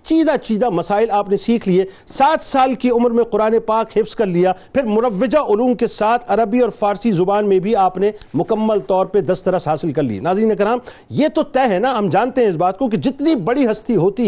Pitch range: 210-260 Hz